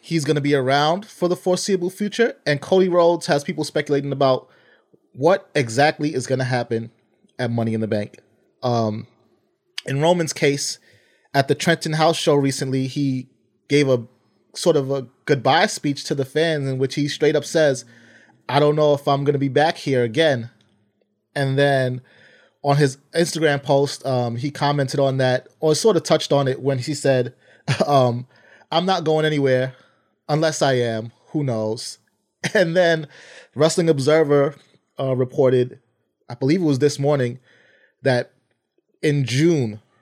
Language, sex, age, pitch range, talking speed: English, male, 30-49, 130-155 Hz, 165 wpm